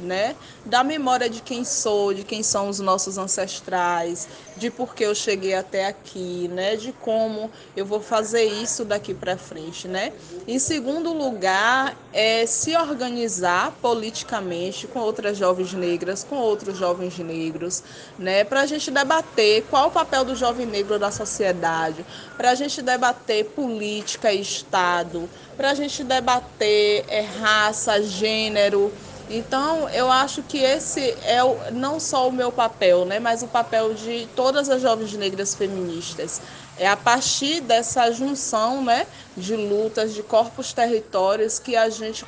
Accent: Brazilian